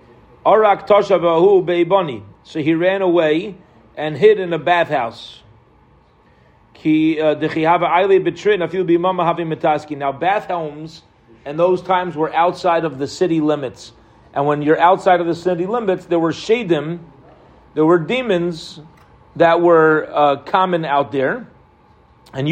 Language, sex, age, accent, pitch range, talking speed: English, male, 40-59, American, 145-175 Hz, 110 wpm